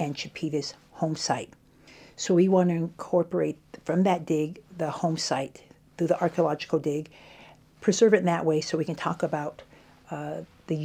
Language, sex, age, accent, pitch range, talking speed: English, female, 50-69, American, 155-175 Hz, 170 wpm